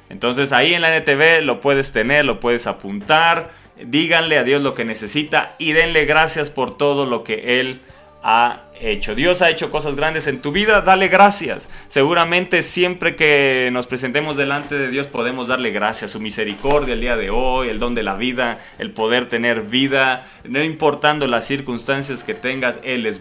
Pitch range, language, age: 130-160 Hz, Spanish, 20-39